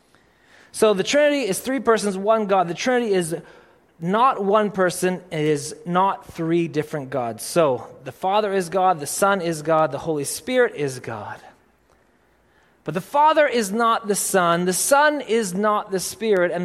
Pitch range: 170-225 Hz